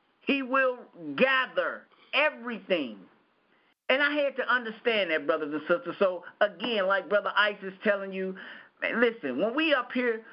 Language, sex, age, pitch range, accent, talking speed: English, male, 50-69, 180-230 Hz, American, 155 wpm